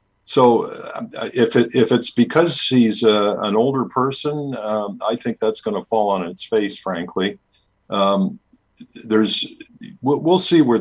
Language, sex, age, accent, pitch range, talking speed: English, male, 50-69, American, 90-120 Hz, 155 wpm